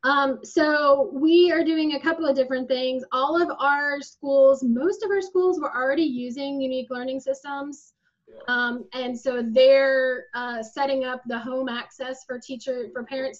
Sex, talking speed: female, 170 wpm